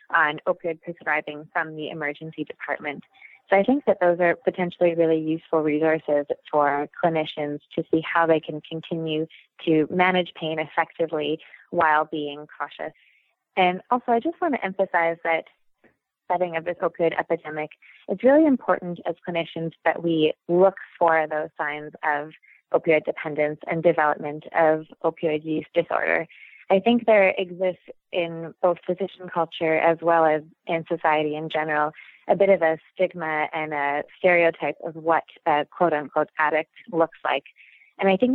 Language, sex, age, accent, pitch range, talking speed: English, female, 20-39, American, 150-175 Hz, 150 wpm